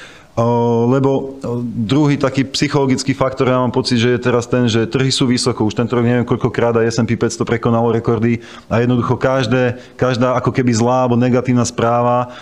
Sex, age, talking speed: male, 30-49, 175 wpm